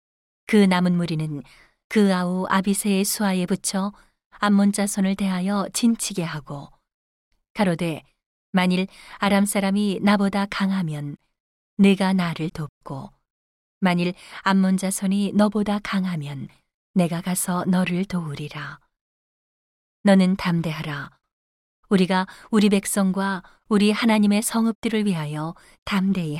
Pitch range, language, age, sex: 160-200 Hz, Korean, 40-59, female